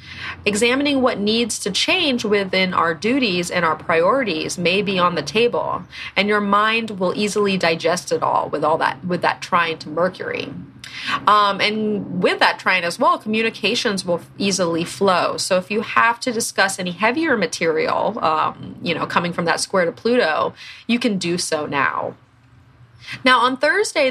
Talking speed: 170 wpm